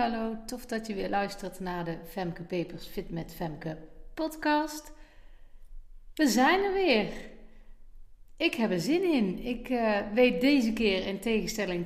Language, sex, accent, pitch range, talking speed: Dutch, female, Dutch, 185-265 Hz, 150 wpm